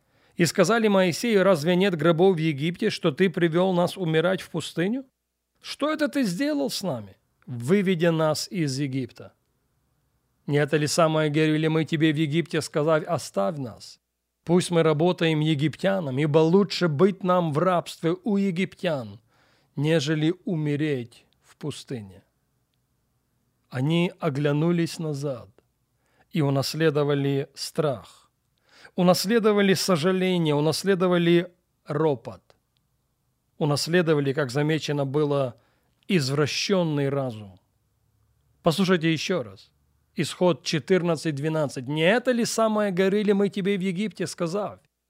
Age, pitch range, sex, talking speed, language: 40-59, 140-190 Hz, male, 115 wpm, Russian